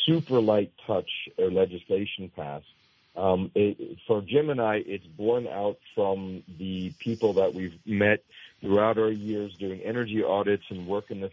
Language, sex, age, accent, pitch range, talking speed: English, male, 50-69, American, 95-120 Hz, 155 wpm